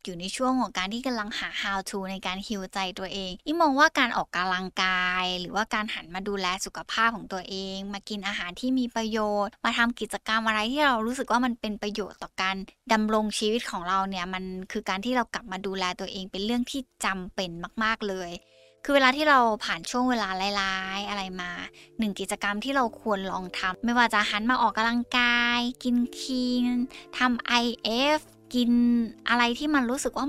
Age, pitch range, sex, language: 20-39, 190-240 Hz, female, Thai